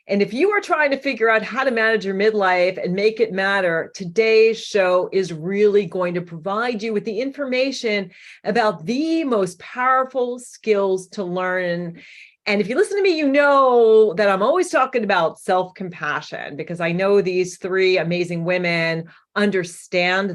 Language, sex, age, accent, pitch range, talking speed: English, female, 40-59, American, 190-275 Hz, 170 wpm